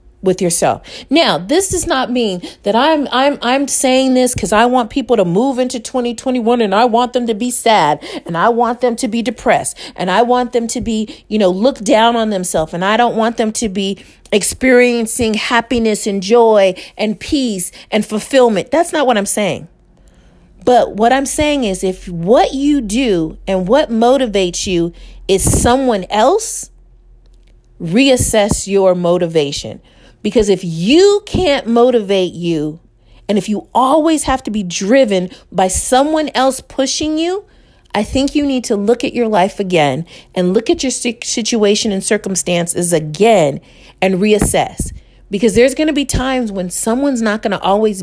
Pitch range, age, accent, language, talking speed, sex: 190-255 Hz, 40-59, American, English, 170 wpm, female